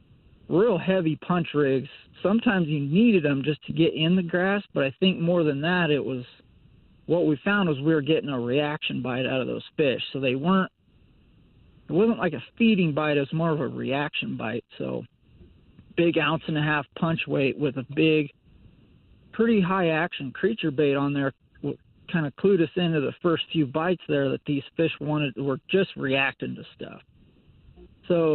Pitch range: 140-175 Hz